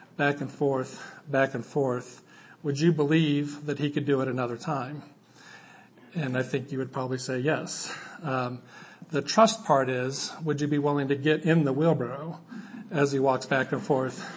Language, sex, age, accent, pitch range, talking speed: English, male, 50-69, American, 135-155 Hz, 185 wpm